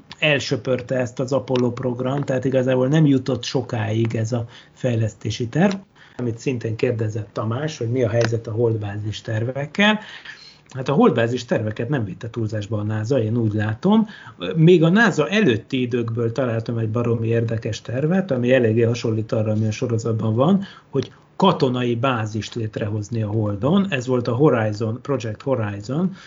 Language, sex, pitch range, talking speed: Hungarian, male, 115-135 Hz, 155 wpm